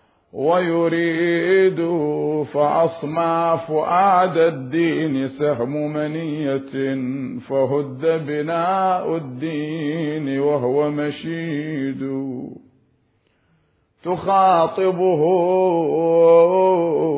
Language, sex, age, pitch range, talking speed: Arabic, male, 50-69, 150-185 Hz, 40 wpm